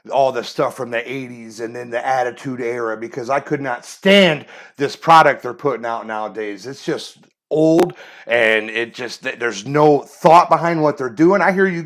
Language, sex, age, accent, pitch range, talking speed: English, male, 30-49, American, 125-175 Hz, 190 wpm